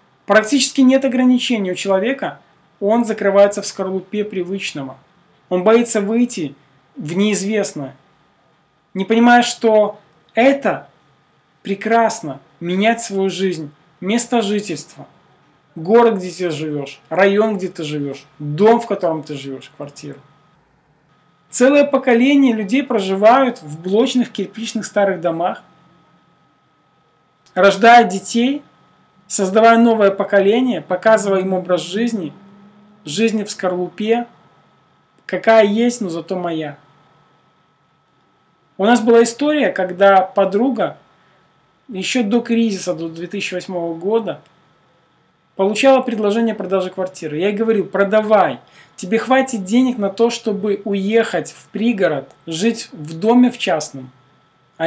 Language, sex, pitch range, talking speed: Russian, male, 175-230 Hz, 110 wpm